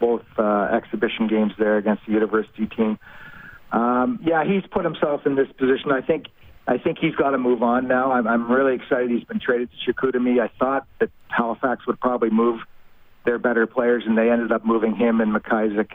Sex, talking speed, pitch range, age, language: male, 205 wpm, 105-125 Hz, 40-59, English